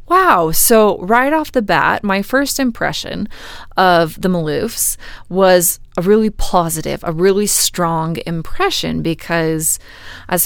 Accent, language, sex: American, English, female